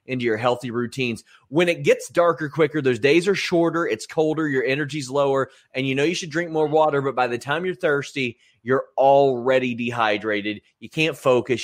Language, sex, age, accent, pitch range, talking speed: English, male, 30-49, American, 115-140 Hz, 195 wpm